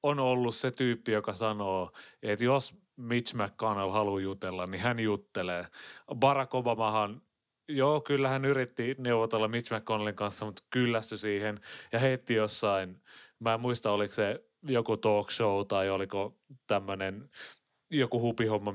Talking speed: 140 wpm